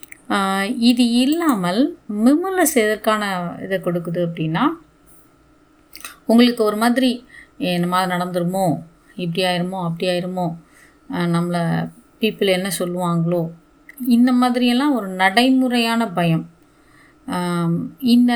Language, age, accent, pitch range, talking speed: Tamil, 30-49, native, 185-250 Hz, 90 wpm